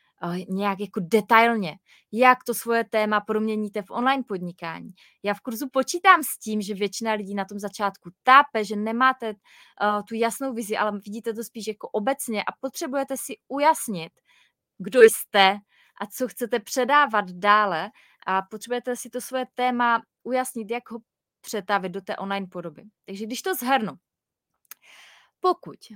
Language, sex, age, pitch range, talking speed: Czech, female, 20-39, 195-235 Hz, 155 wpm